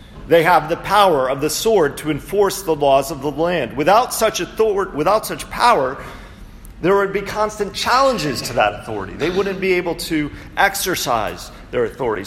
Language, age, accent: English, 40-59, American